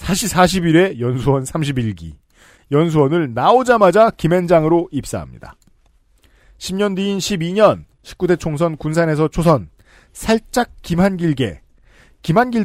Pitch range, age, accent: 135-190 Hz, 40-59, native